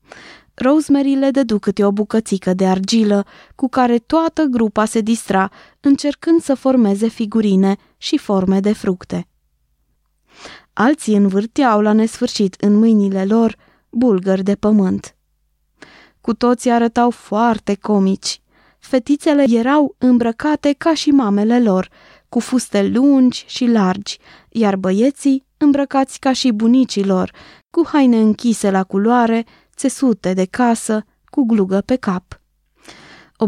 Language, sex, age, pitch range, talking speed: Romanian, female, 20-39, 200-260 Hz, 120 wpm